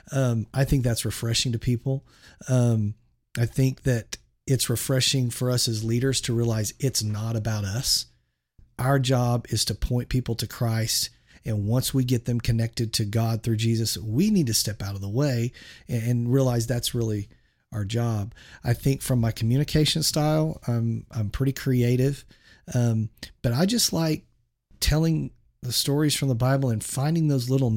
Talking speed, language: 175 wpm, English